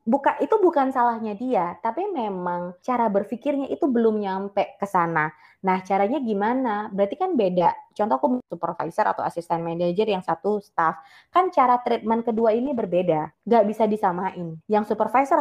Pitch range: 180-235 Hz